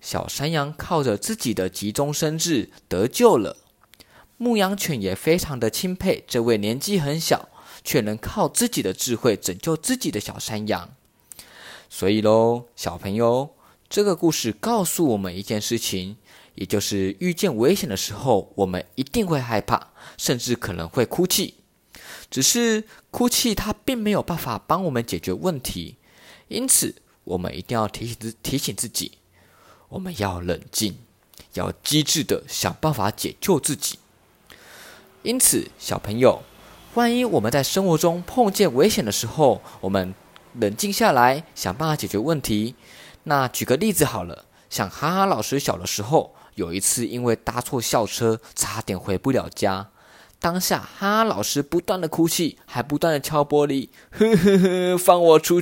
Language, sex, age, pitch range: Chinese, male, 20-39, 110-175 Hz